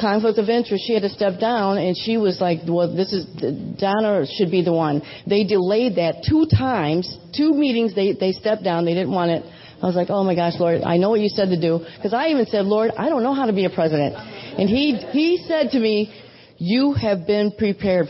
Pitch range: 185-230 Hz